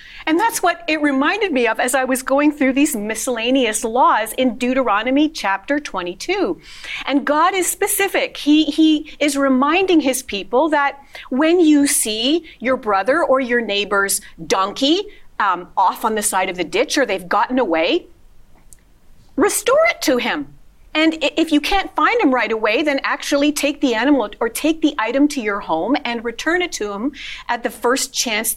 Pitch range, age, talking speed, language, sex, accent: 225-295 Hz, 40-59, 175 wpm, English, female, American